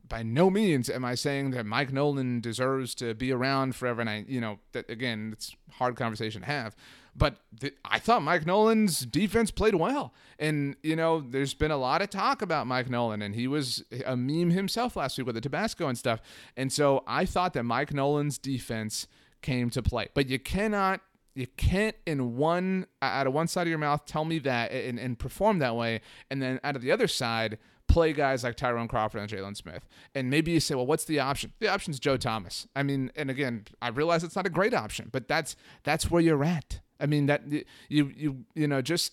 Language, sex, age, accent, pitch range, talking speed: English, male, 30-49, American, 115-155 Hz, 220 wpm